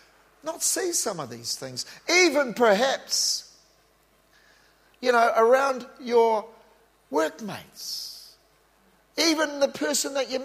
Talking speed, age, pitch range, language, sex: 105 wpm, 40-59, 175-240 Hz, English, male